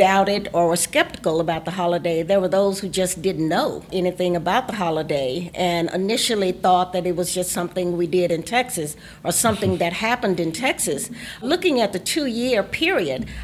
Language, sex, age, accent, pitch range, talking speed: English, female, 50-69, American, 180-240 Hz, 185 wpm